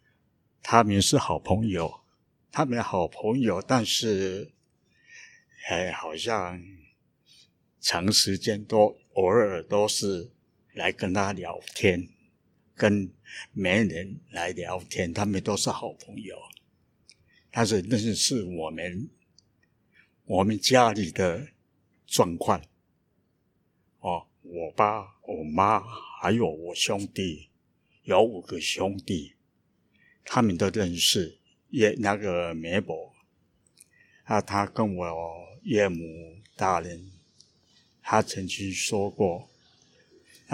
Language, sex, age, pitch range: Chinese, male, 60-79, 90-115 Hz